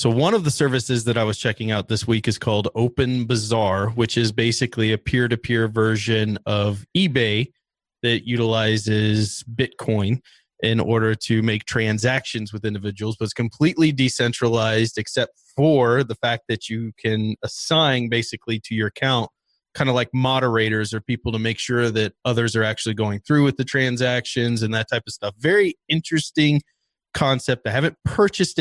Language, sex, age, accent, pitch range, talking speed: English, male, 30-49, American, 110-135 Hz, 165 wpm